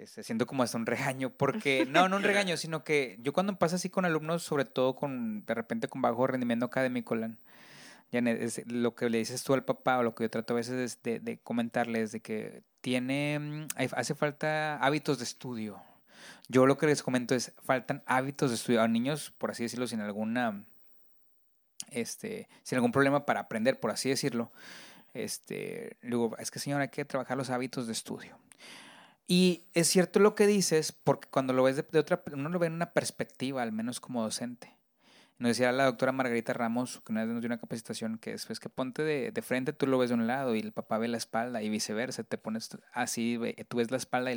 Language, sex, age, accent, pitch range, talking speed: Spanish, male, 30-49, Mexican, 120-160 Hz, 210 wpm